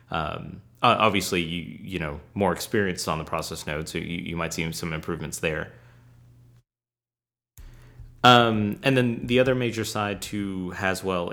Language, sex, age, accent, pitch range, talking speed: English, male, 30-49, American, 90-120 Hz, 150 wpm